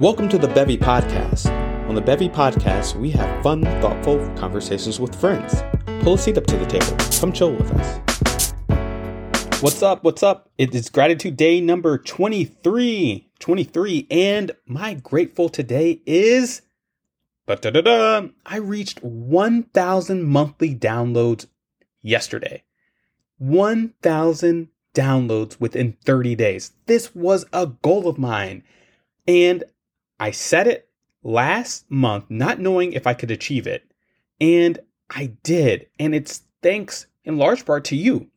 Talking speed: 135 wpm